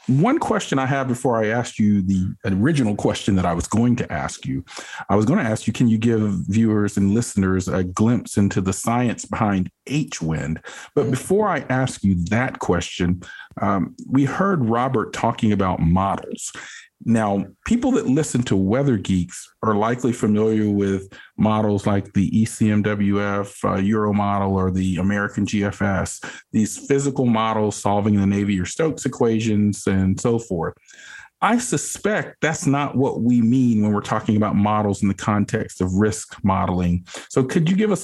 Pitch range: 100-125 Hz